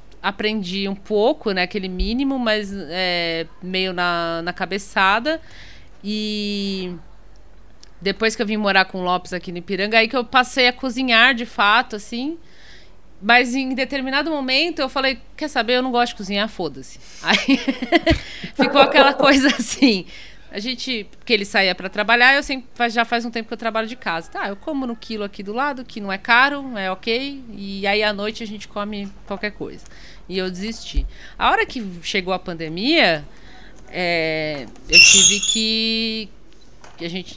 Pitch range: 180-245 Hz